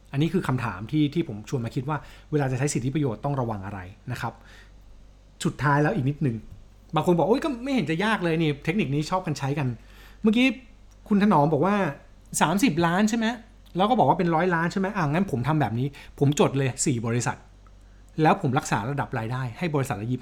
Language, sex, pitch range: Thai, male, 110-160 Hz